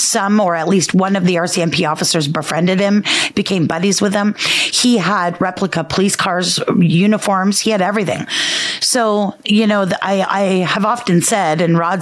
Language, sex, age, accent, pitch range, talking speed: English, female, 30-49, American, 170-215 Hz, 170 wpm